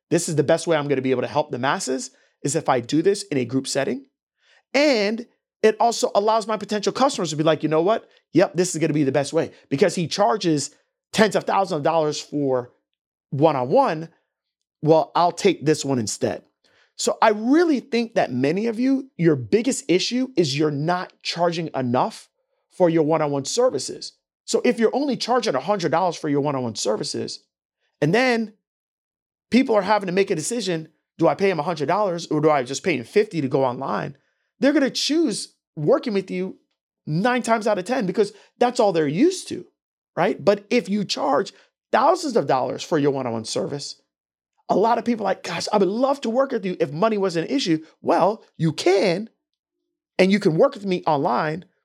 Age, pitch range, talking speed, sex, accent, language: 30-49, 150-225 Hz, 200 wpm, male, American, English